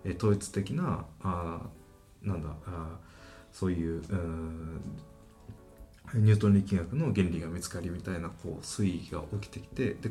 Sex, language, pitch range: male, Japanese, 85-110 Hz